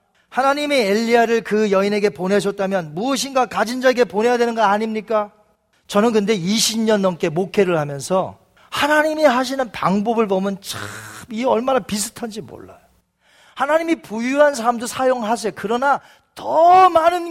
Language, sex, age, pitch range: Korean, male, 40-59, 210-295 Hz